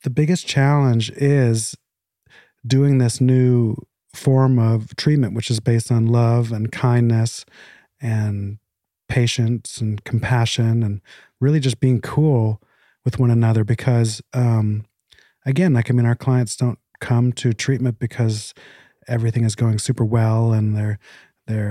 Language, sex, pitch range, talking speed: English, male, 110-130 Hz, 140 wpm